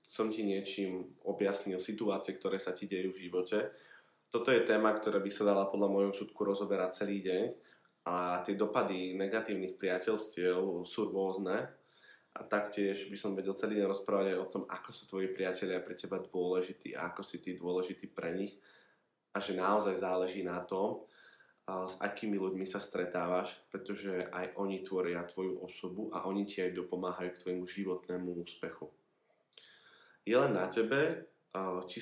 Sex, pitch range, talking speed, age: male, 90-100 Hz, 165 wpm, 20-39